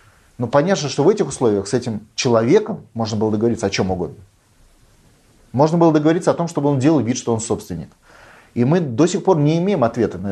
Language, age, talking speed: Russian, 30-49, 210 wpm